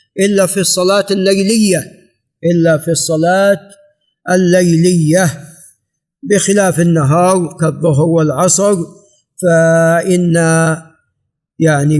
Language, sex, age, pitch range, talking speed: Arabic, male, 50-69, 165-195 Hz, 70 wpm